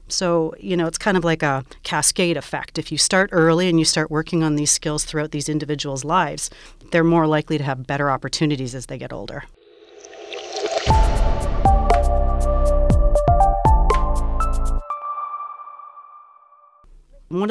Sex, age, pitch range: female, 40-59, 145-185 Hz